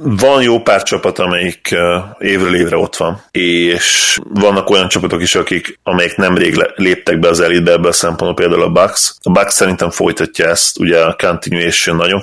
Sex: male